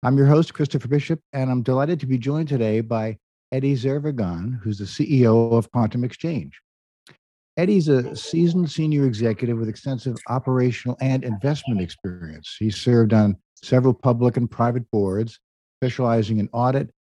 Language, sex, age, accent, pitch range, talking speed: English, male, 50-69, American, 110-135 Hz, 150 wpm